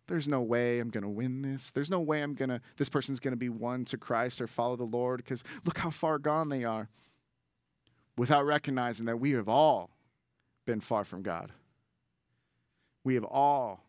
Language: English